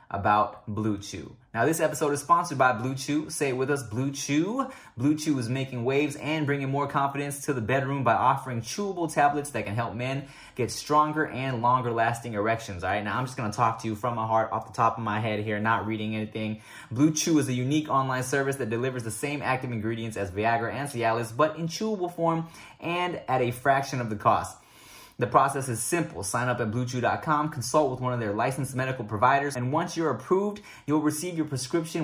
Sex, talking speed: male, 220 wpm